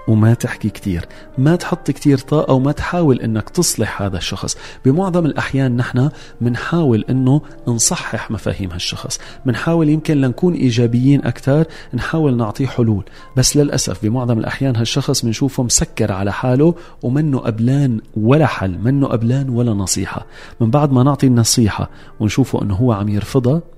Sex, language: male, Arabic